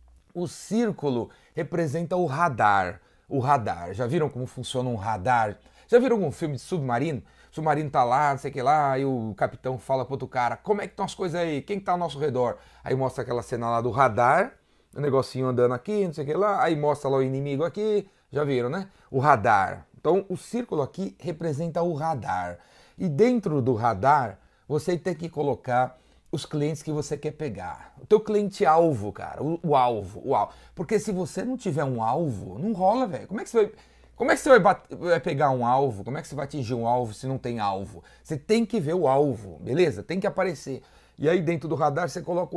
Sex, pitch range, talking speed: male, 125-180 Hz, 225 wpm